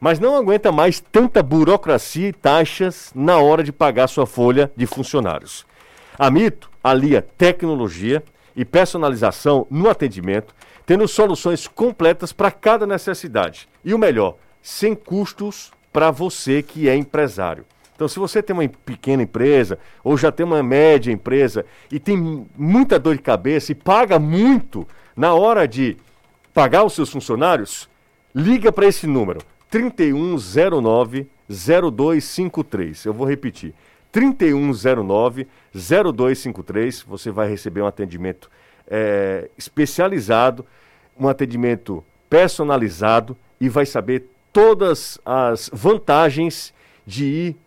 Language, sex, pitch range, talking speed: Portuguese, male, 125-175 Hz, 120 wpm